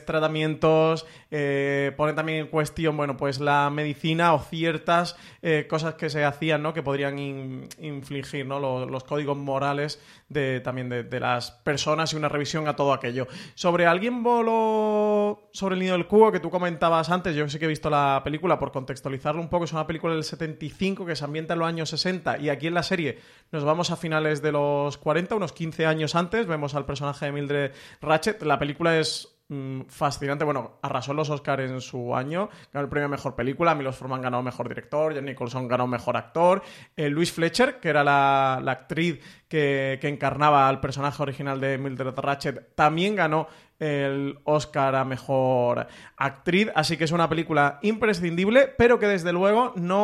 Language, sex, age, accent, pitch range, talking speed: Spanish, male, 30-49, Spanish, 140-170 Hz, 185 wpm